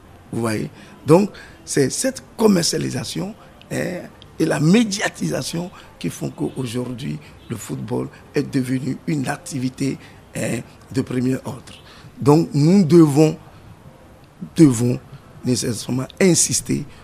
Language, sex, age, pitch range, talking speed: French, male, 50-69, 125-165 Hz, 95 wpm